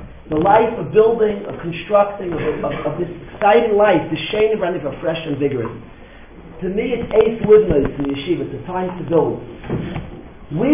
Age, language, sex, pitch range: 40-59, English, male, 180-240 Hz